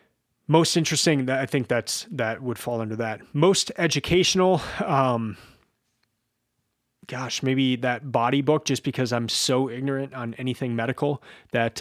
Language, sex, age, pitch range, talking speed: English, male, 30-49, 115-135 Hz, 135 wpm